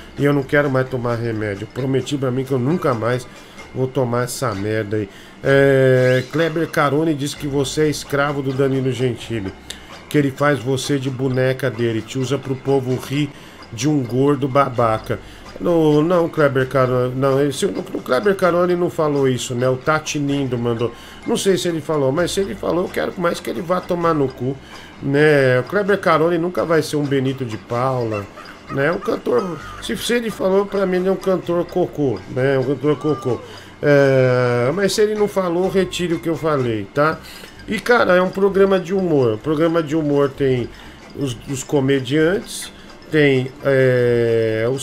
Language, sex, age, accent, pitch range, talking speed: Portuguese, male, 40-59, Brazilian, 130-170 Hz, 175 wpm